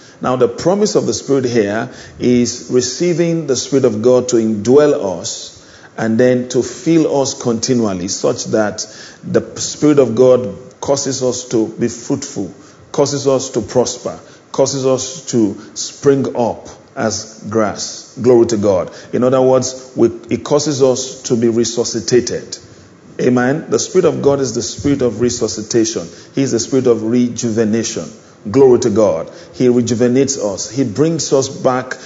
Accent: Nigerian